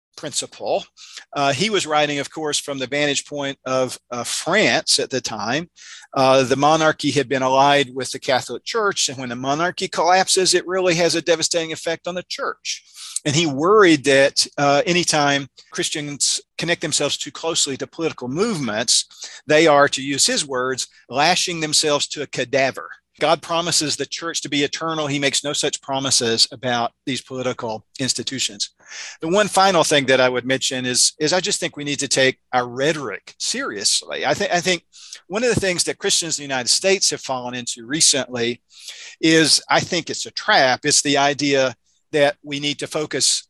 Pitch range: 130-160 Hz